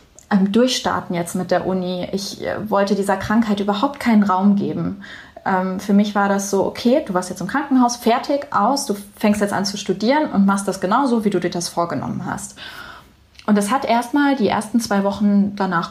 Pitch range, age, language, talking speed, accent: 190-220 Hz, 20-39, German, 190 wpm, German